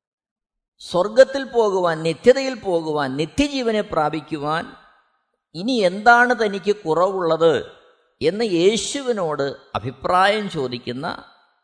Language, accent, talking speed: Malayalam, native, 65 wpm